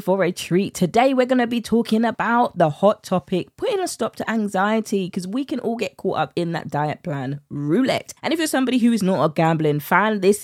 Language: English